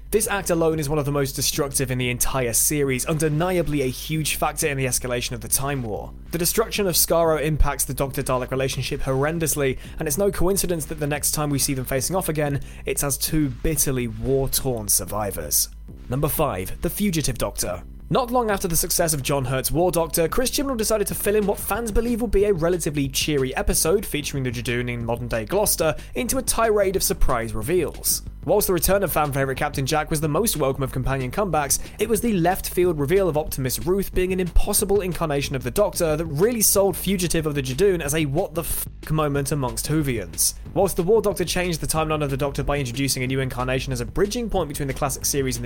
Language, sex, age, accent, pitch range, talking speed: English, male, 20-39, British, 135-185 Hz, 210 wpm